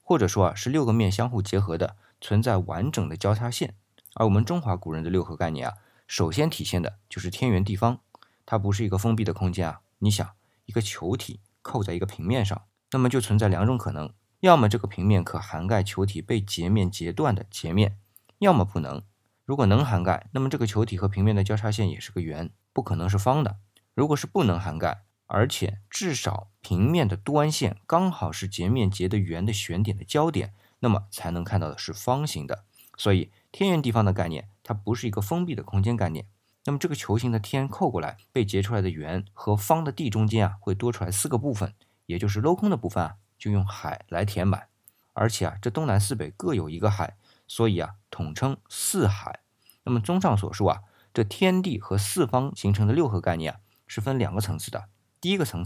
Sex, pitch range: male, 95-120 Hz